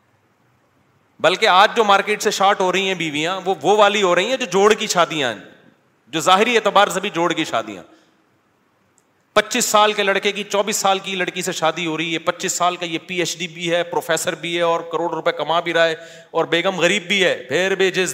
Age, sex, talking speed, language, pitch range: 30-49, male, 235 wpm, Urdu, 160-195 Hz